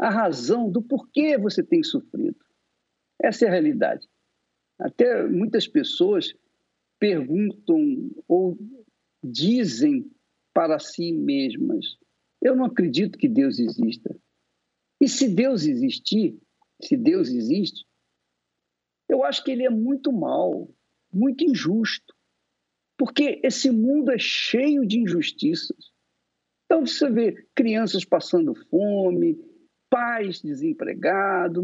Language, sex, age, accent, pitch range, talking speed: Portuguese, male, 50-69, Brazilian, 205-295 Hz, 110 wpm